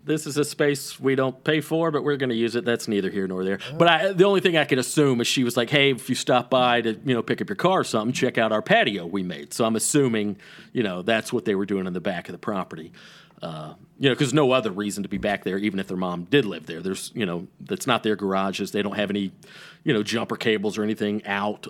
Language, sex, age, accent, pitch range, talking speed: English, male, 40-59, American, 105-145 Hz, 285 wpm